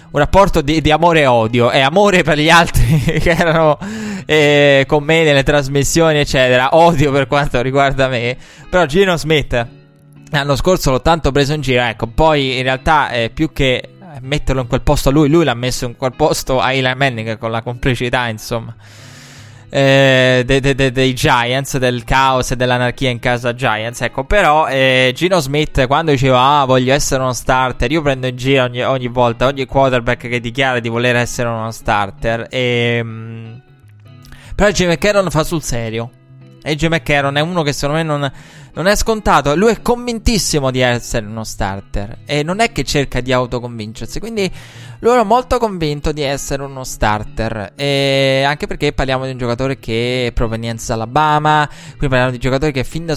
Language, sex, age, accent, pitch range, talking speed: Italian, male, 20-39, native, 120-150 Hz, 185 wpm